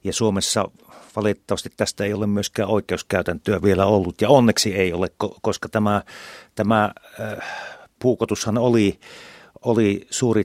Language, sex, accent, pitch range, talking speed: Finnish, male, native, 100-120 Hz, 125 wpm